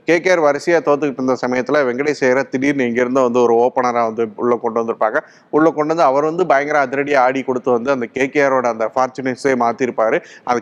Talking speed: 175 wpm